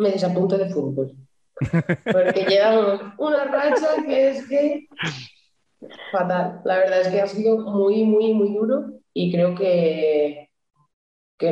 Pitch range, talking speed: 160-190 Hz, 135 wpm